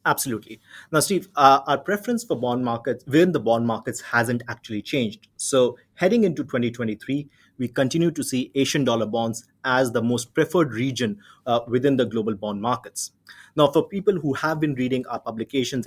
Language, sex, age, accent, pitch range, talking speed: English, male, 30-49, Indian, 115-155 Hz, 180 wpm